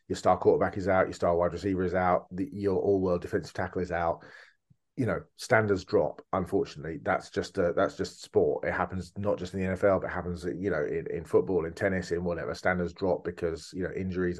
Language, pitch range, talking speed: English, 90-115 Hz, 225 wpm